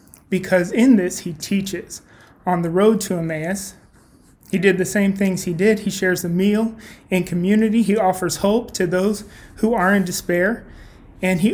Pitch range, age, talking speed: 180-210 Hz, 30-49, 175 wpm